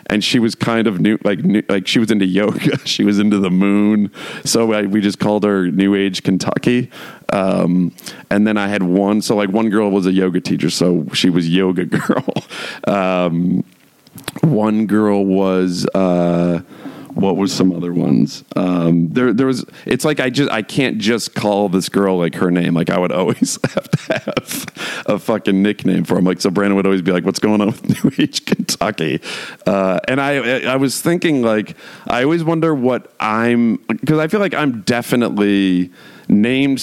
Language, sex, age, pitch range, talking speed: English, male, 40-59, 95-115 Hz, 190 wpm